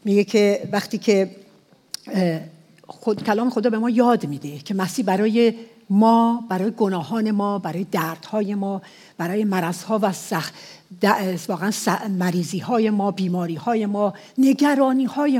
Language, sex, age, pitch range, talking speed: English, female, 60-79, 190-230 Hz, 125 wpm